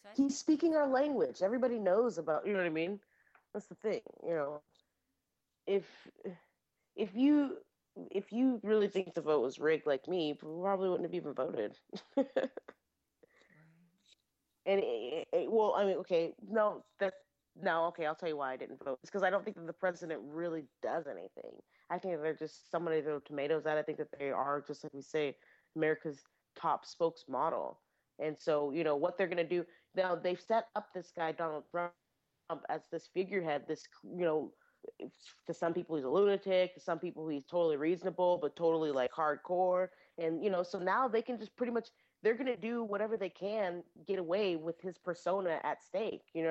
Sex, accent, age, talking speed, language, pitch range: female, American, 30-49, 195 wpm, English, 155-205 Hz